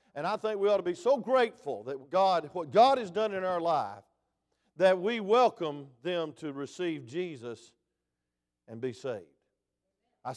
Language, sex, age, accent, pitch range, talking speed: English, male, 50-69, American, 135-180 Hz, 170 wpm